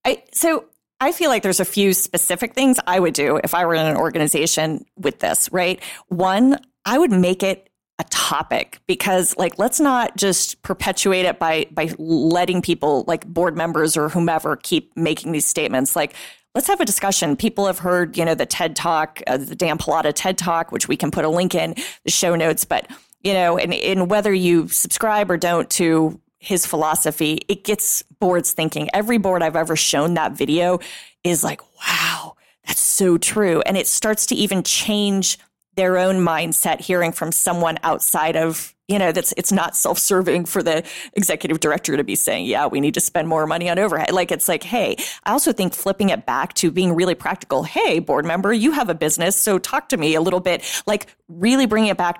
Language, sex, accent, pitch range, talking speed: English, female, American, 165-200 Hz, 205 wpm